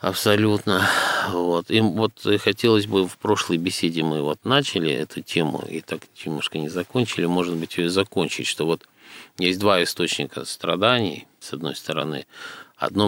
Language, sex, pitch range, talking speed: Russian, male, 80-105 Hz, 155 wpm